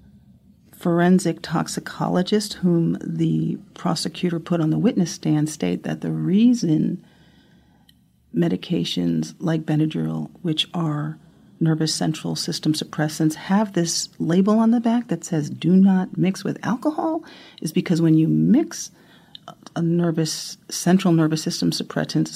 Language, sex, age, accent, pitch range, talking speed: English, female, 40-59, American, 150-180 Hz, 125 wpm